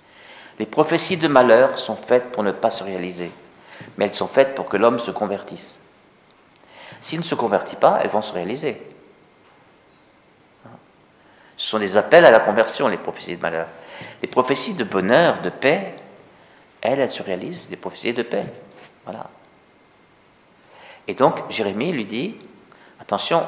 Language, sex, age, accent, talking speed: French, male, 50-69, French, 155 wpm